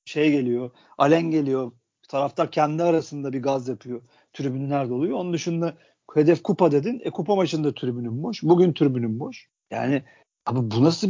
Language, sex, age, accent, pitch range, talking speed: Turkish, male, 50-69, native, 125-170 Hz, 160 wpm